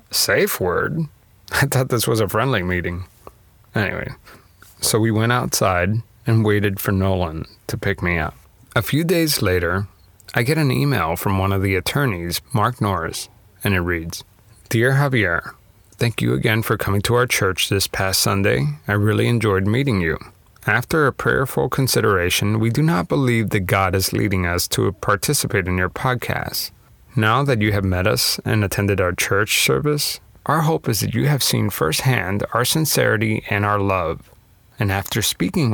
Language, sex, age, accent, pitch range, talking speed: English, male, 30-49, American, 95-120 Hz, 175 wpm